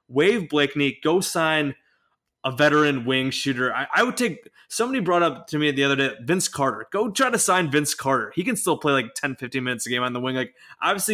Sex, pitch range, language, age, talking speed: male, 135-175 Hz, English, 20-39, 230 wpm